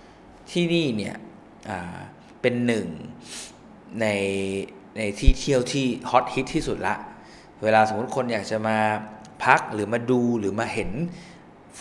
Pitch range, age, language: 100-130 Hz, 20-39, Thai